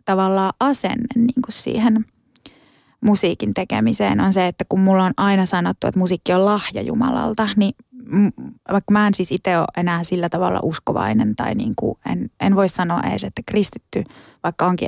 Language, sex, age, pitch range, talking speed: Finnish, female, 20-39, 180-210 Hz, 165 wpm